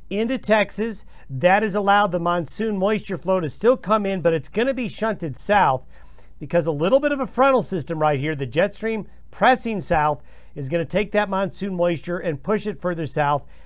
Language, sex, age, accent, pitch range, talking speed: English, male, 50-69, American, 150-210 Hz, 200 wpm